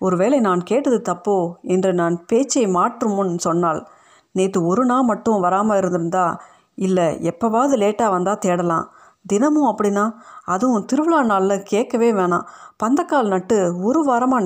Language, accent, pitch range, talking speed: Tamil, native, 180-230 Hz, 130 wpm